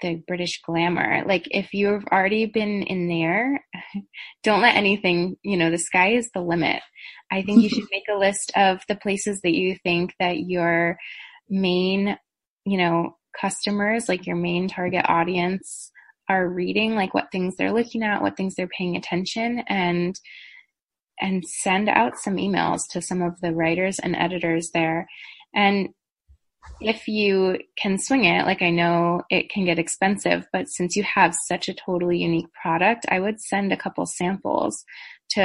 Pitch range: 170-205 Hz